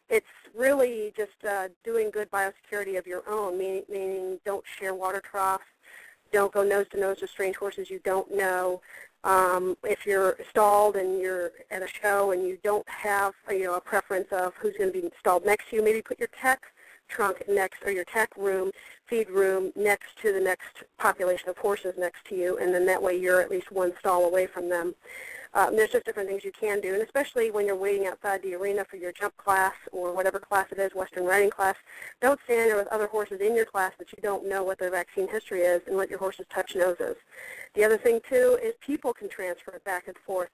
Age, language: 40-59, English